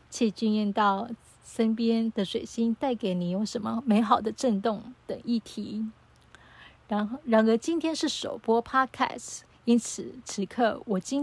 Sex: female